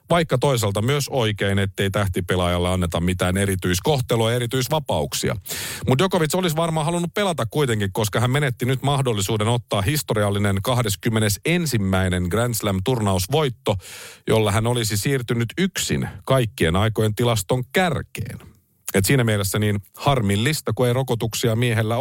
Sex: male